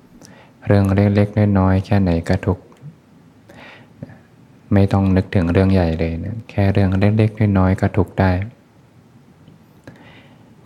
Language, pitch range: Thai, 90-100 Hz